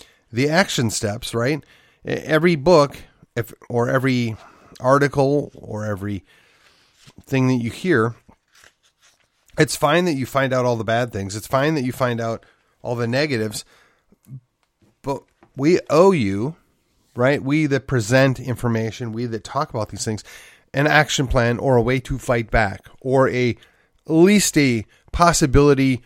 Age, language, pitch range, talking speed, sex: 30-49, English, 115-145 Hz, 145 wpm, male